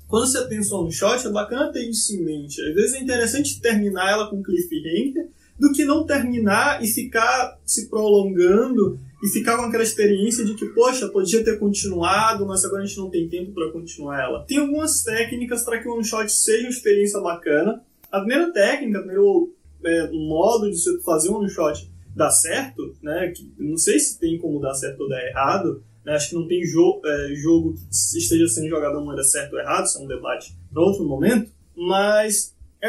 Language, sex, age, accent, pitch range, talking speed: Portuguese, male, 20-39, Brazilian, 175-240 Hz, 205 wpm